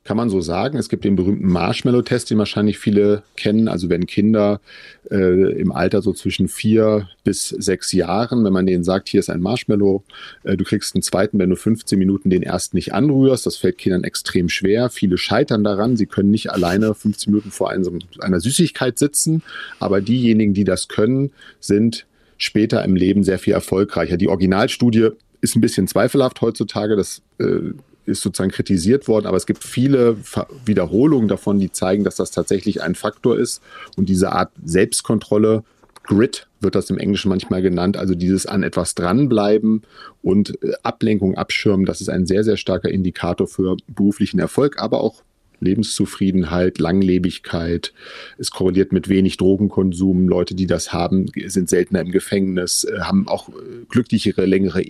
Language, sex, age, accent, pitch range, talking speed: German, male, 40-59, German, 95-110 Hz, 165 wpm